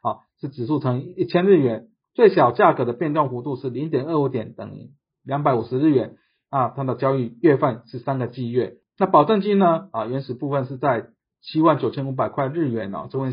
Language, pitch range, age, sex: Chinese, 125-155 Hz, 50-69, male